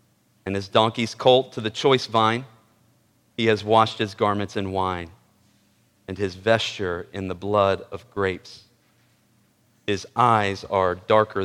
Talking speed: 140 wpm